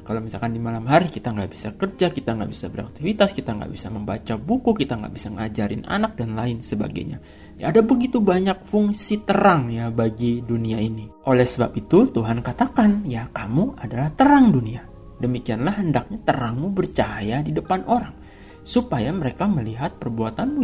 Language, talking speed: Indonesian, 165 wpm